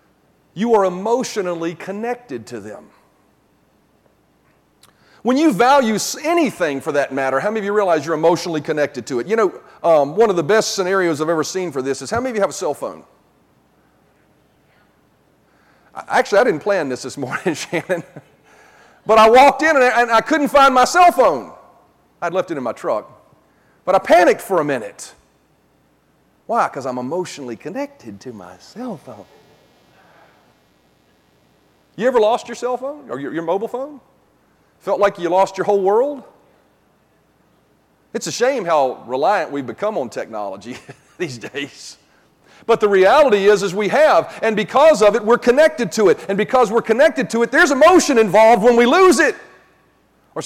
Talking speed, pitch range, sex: 170 wpm, 165-265 Hz, male